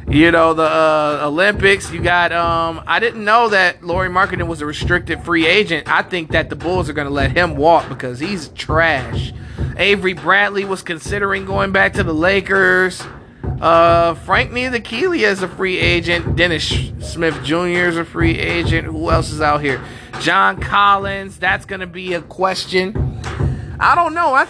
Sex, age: male, 20-39